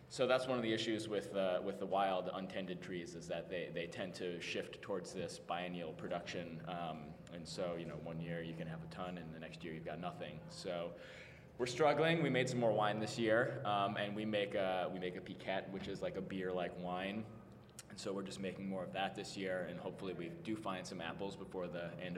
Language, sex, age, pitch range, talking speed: English, male, 20-39, 85-110 Hz, 240 wpm